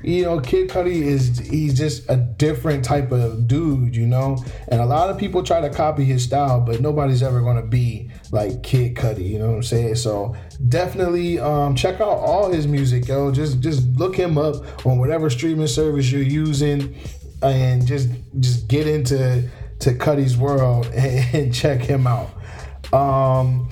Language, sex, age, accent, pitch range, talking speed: English, male, 20-39, American, 120-150 Hz, 175 wpm